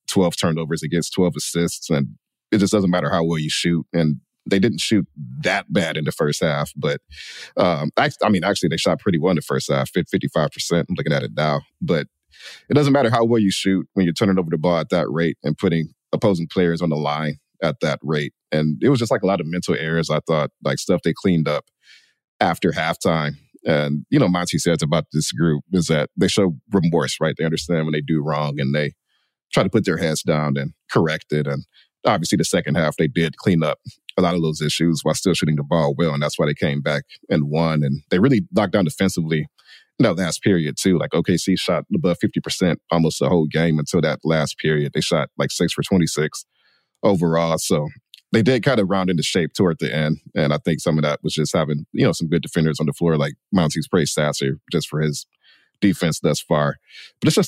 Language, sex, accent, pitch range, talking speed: English, male, American, 75-85 Hz, 230 wpm